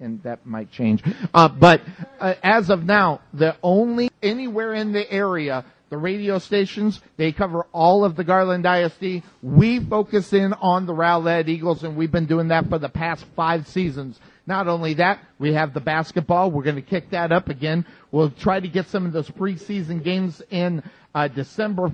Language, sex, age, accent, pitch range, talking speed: English, male, 50-69, American, 165-200 Hz, 190 wpm